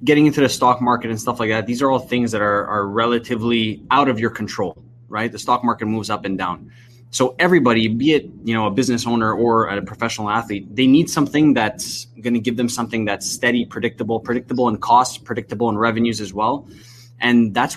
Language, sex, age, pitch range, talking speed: English, male, 20-39, 110-125 Hz, 215 wpm